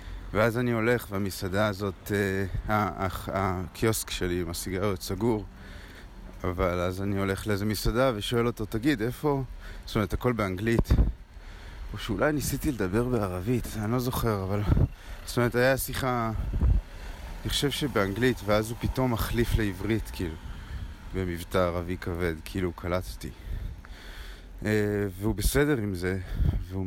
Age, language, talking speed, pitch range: 30-49, Hebrew, 135 wpm, 90-110 Hz